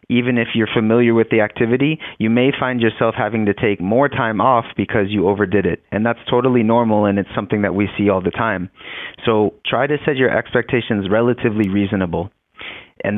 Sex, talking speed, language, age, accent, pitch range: male, 195 wpm, English, 30-49, American, 105-125 Hz